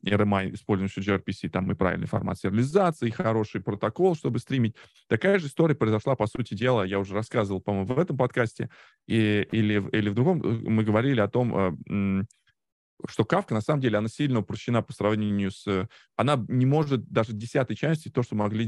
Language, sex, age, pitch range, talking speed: Russian, male, 20-39, 100-120 Hz, 180 wpm